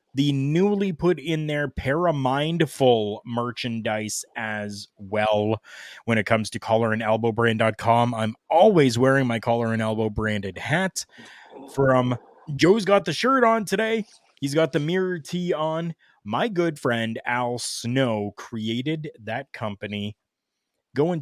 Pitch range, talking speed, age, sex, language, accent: 110-140 Hz, 130 wpm, 20-39, male, English, American